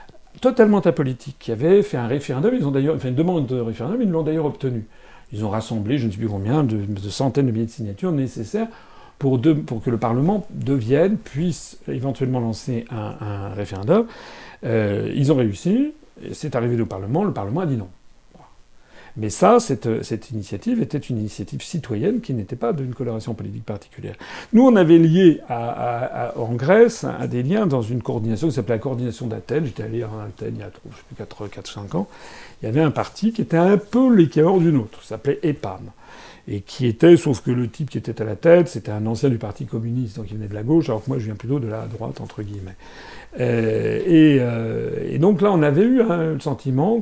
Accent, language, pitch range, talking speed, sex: French, French, 115-160 Hz, 215 wpm, male